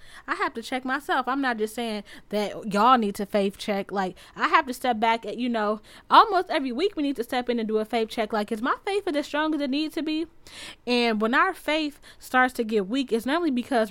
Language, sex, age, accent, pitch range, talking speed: English, female, 10-29, American, 210-260 Hz, 260 wpm